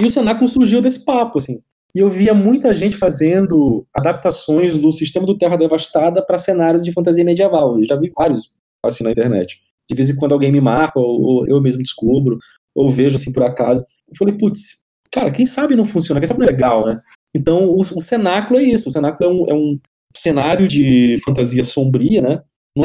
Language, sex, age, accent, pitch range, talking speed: Portuguese, male, 20-39, Brazilian, 130-165 Hz, 205 wpm